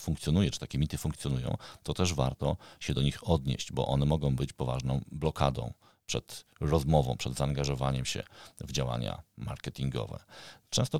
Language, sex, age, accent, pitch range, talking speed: Polish, male, 40-59, native, 65-80 Hz, 145 wpm